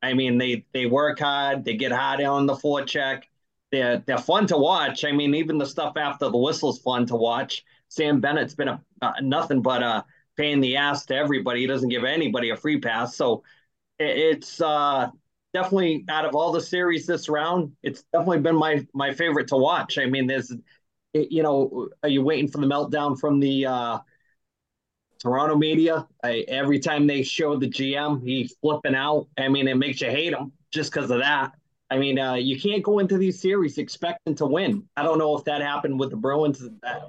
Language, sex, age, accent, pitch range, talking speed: English, male, 20-39, American, 135-155 Hz, 205 wpm